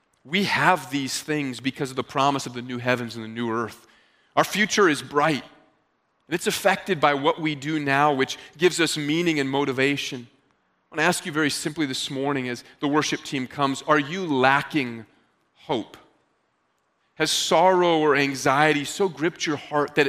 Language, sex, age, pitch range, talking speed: English, male, 30-49, 140-195 Hz, 180 wpm